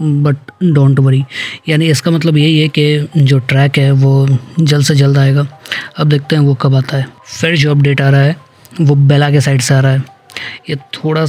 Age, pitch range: 20-39, 140-155 Hz